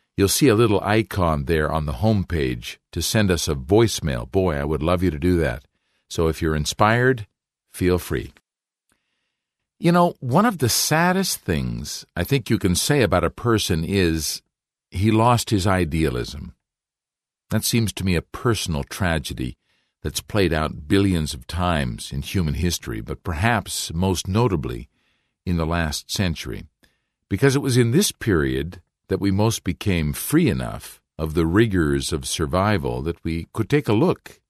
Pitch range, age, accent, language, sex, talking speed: 80-105 Hz, 50-69, American, English, male, 165 wpm